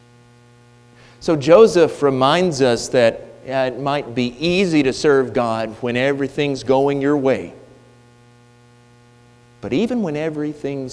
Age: 30-49